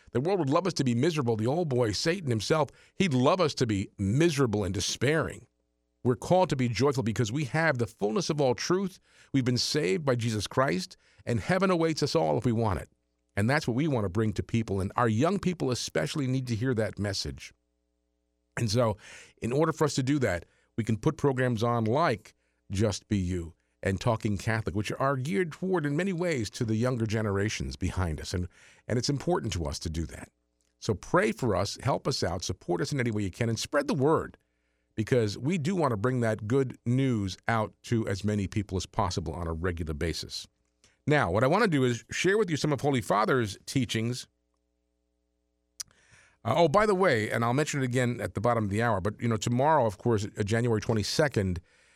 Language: English